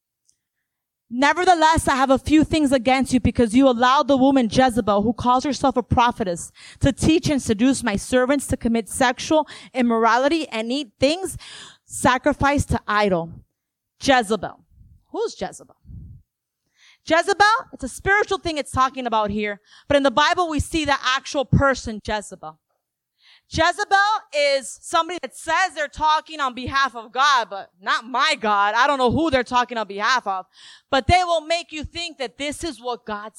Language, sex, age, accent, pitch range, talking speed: English, female, 30-49, American, 235-315 Hz, 165 wpm